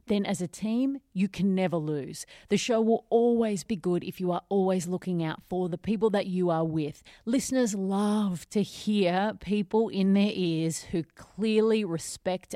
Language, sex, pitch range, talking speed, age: English, female, 170-210 Hz, 180 wpm, 30-49